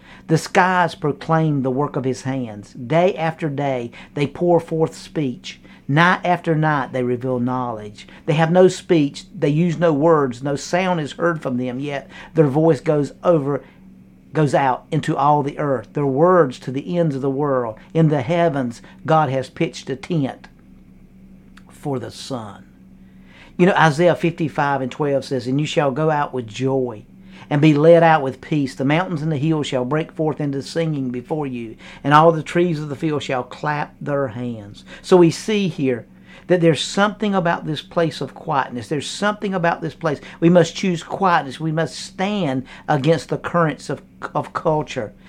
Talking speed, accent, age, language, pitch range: 185 wpm, American, 50-69, English, 130-170 Hz